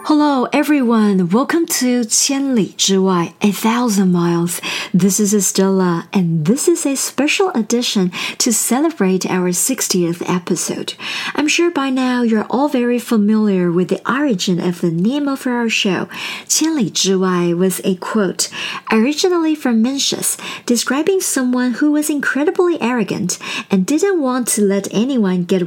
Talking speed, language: 145 wpm, English